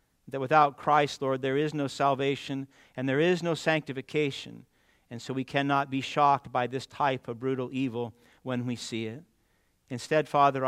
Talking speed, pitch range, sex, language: 175 wpm, 125-140 Hz, male, English